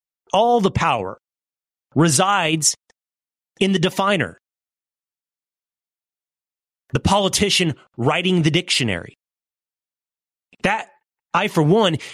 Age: 30-49